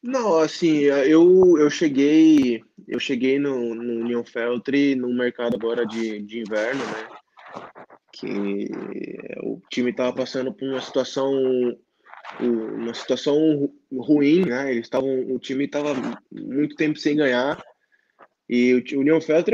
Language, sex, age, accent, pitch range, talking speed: Portuguese, male, 20-39, Brazilian, 115-140 Hz, 125 wpm